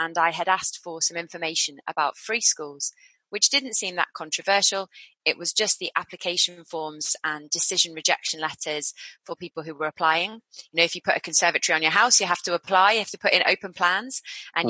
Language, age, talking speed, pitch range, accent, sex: English, 20-39, 210 wpm, 160-205 Hz, British, female